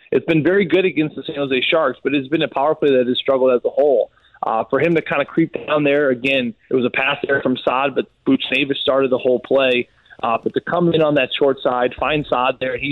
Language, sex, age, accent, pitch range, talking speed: English, male, 20-39, American, 130-150 Hz, 265 wpm